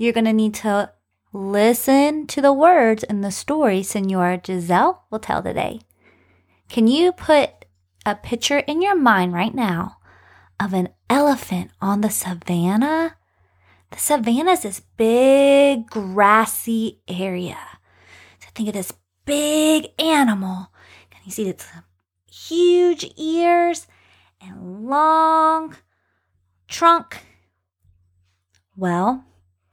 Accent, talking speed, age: American, 115 wpm, 20-39